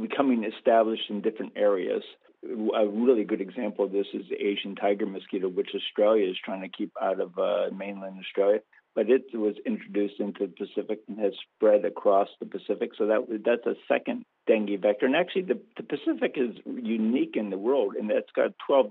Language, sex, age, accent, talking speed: English, male, 50-69, American, 195 wpm